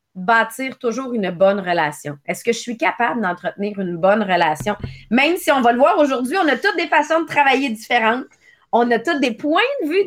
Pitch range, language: 220-295 Hz, English